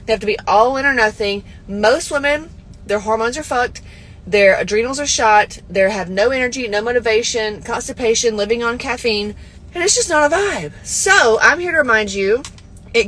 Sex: female